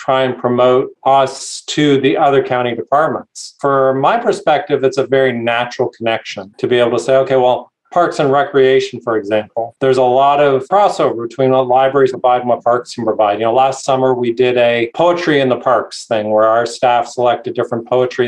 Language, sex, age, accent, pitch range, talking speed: English, male, 40-59, American, 120-140 Hz, 200 wpm